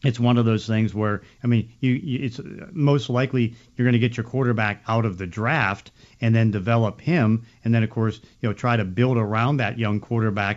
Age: 50-69